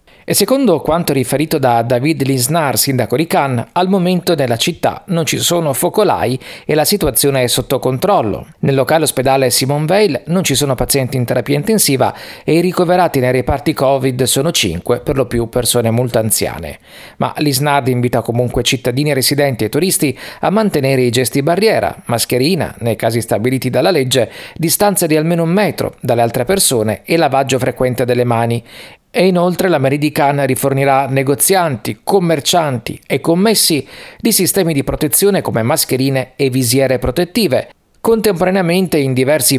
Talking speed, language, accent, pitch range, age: 160 wpm, Italian, native, 125-165 Hz, 40-59